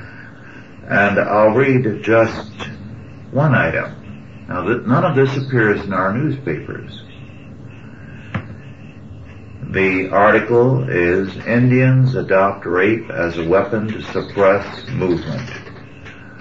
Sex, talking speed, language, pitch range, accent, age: male, 95 wpm, English, 95-120 Hz, American, 60-79